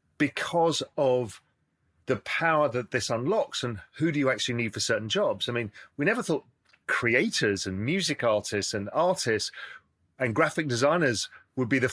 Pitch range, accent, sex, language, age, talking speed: 105-140 Hz, British, male, English, 40-59, 165 wpm